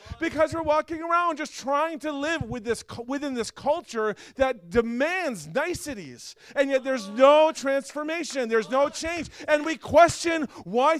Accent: American